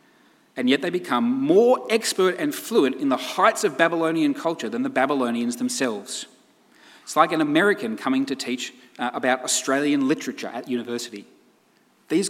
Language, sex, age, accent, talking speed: English, male, 30-49, Australian, 155 wpm